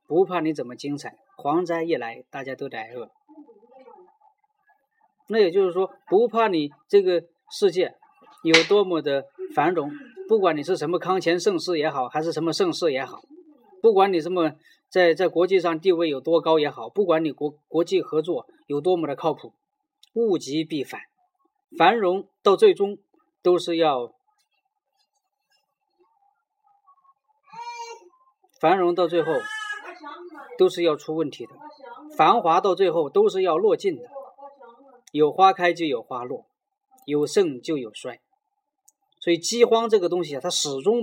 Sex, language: male, Chinese